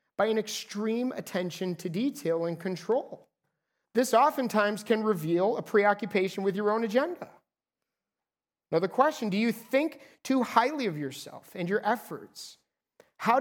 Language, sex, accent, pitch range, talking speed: English, male, American, 200-265 Hz, 145 wpm